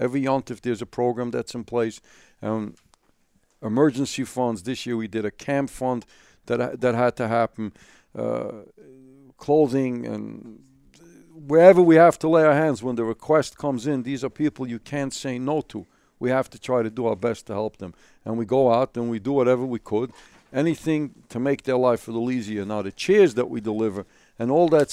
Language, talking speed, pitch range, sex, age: English, 205 wpm, 115-140 Hz, male, 60-79